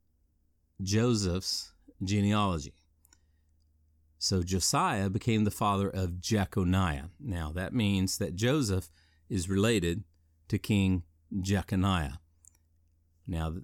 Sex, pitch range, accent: male, 85-105 Hz, American